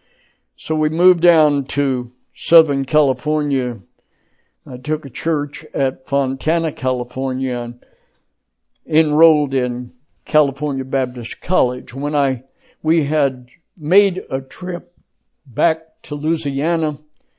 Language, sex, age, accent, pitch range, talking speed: English, male, 60-79, American, 130-160 Hz, 105 wpm